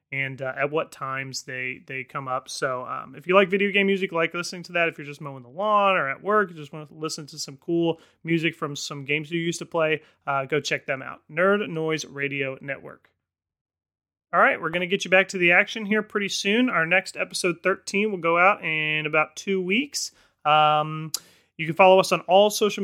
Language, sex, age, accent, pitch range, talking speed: English, male, 30-49, American, 145-195 Hz, 230 wpm